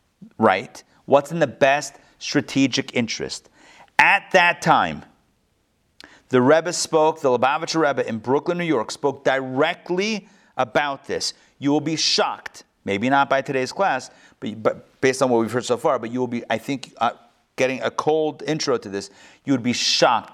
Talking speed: 175 wpm